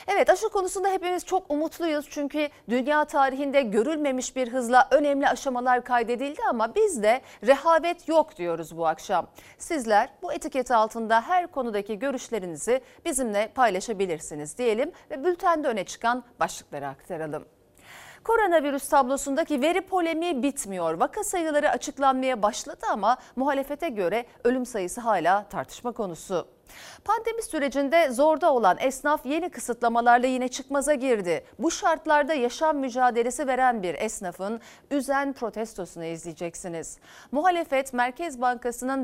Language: Turkish